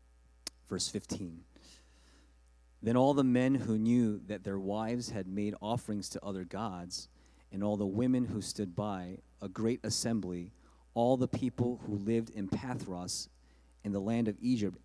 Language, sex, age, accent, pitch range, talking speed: English, male, 30-49, American, 85-115 Hz, 160 wpm